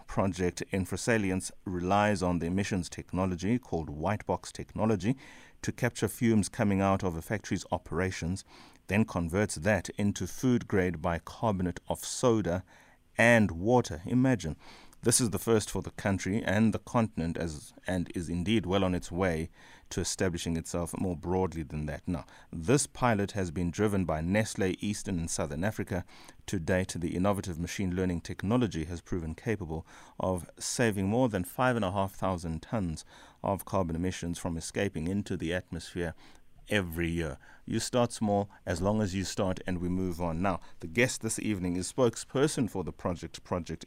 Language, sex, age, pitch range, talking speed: English, male, 30-49, 85-105 Hz, 160 wpm